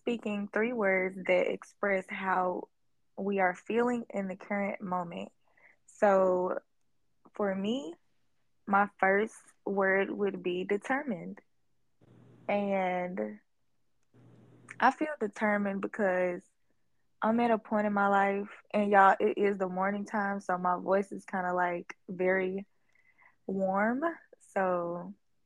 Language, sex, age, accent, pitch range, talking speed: English, female, 20-39, American, 185-215 Hz, 120 wpm